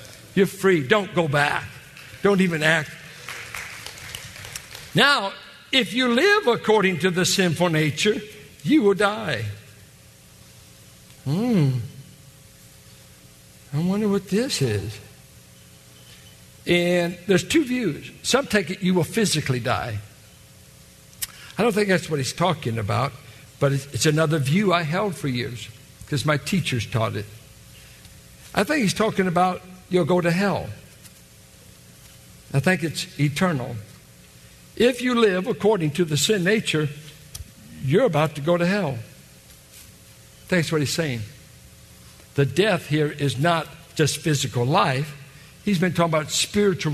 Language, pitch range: English, 130-185 Hz